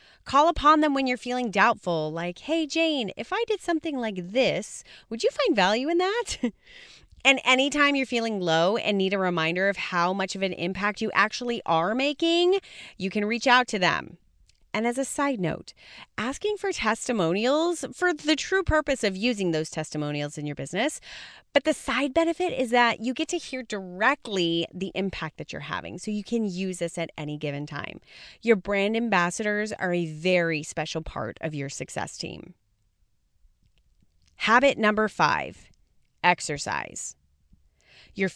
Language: English